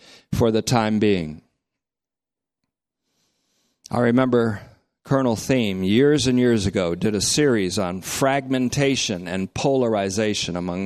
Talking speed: 110 wpm